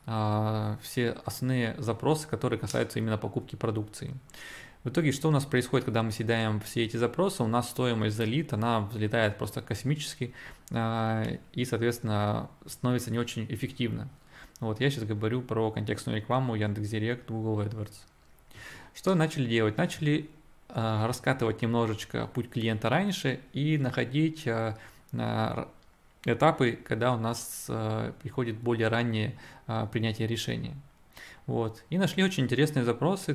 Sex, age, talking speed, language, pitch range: male, 20-39, 130 wpm, Russian, 110-135 Hz